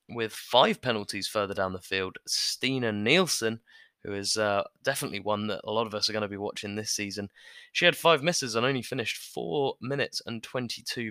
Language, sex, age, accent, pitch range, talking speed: English, male, 20-39, British, 105-130 Hz, 200 wpm